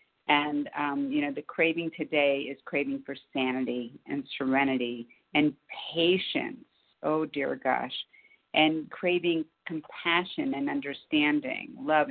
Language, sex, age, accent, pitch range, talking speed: English, female, 40-59, American, 145-185 Hz, 120 wpm